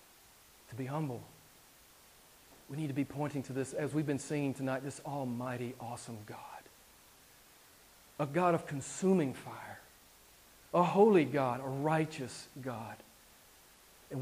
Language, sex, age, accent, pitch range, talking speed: English, male, 40-59, American, 135-170 Hz, 130 wpm